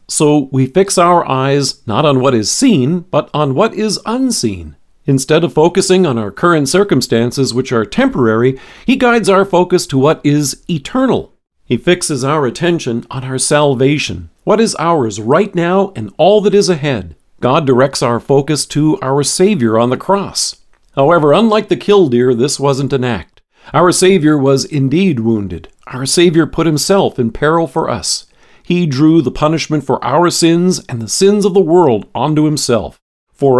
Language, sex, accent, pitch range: English, male, American, 130-180 Hz